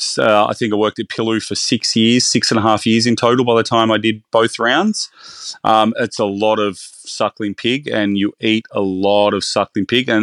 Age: 30-49